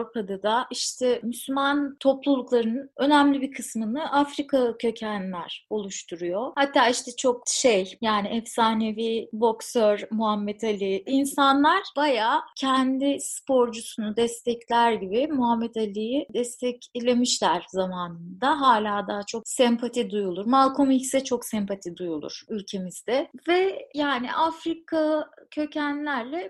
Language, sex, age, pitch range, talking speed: Turkish, female, 30-49, 220-280 Hz, 100 wpm